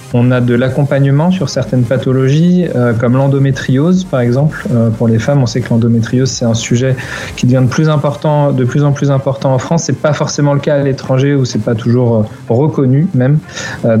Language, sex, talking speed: French, male, 225 wpm